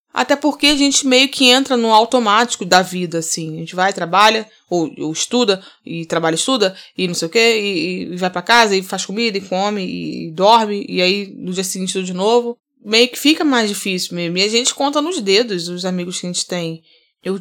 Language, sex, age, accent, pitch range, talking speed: Portuguese, female, 20-39, Brazilian, 185-235 Hz, 230 wpm